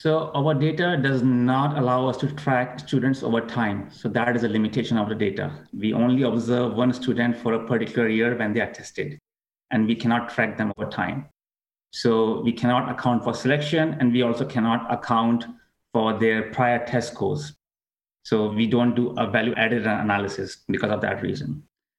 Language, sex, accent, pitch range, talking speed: English, male, Indian, 115-130 Hz, 185 wpm